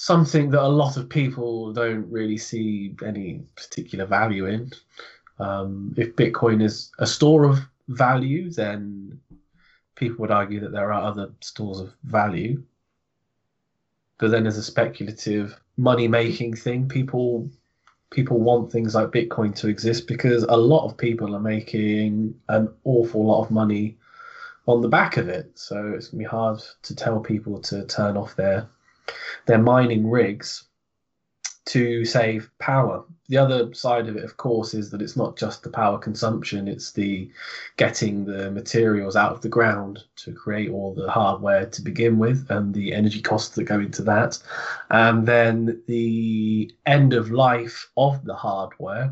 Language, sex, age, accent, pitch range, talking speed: English, male, 20-39, British, 105-120 Hz, 160 wpm